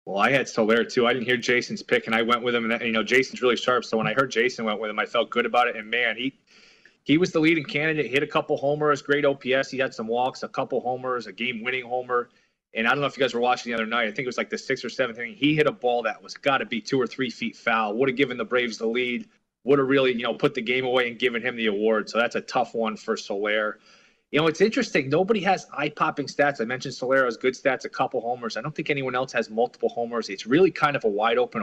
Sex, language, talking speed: male, English, 290 wpm